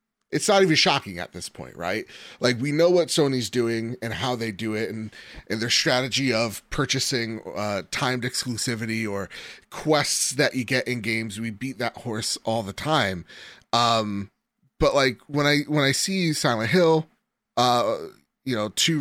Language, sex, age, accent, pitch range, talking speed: English, male, 30-49, American, 110-140 Hz, 175 wpm